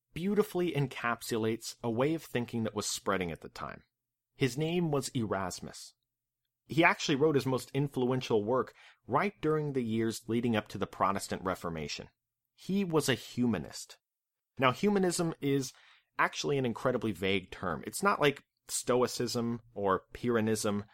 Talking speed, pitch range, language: 145 wpm, 110-145 Hz, English